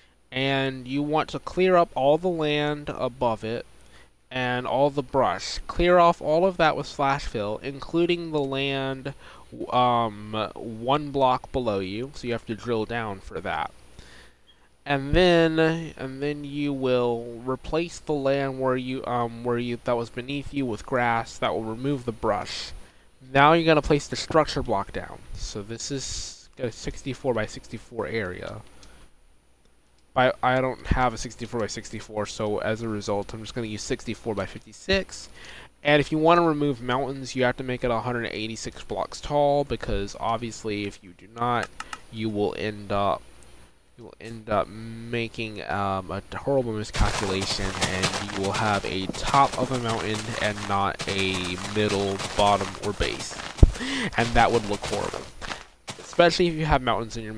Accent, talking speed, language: American, 170 wpm, English